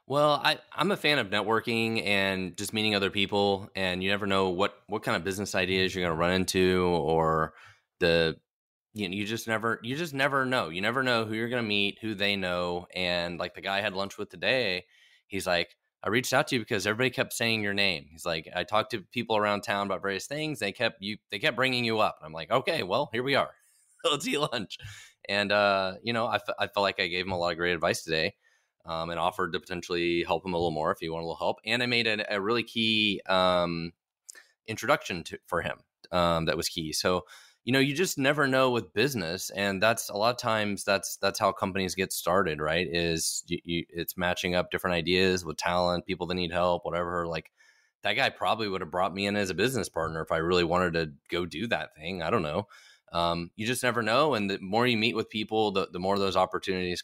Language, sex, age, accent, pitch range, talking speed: English, male, 20-39, American, 90-110 Hz, 240 wpm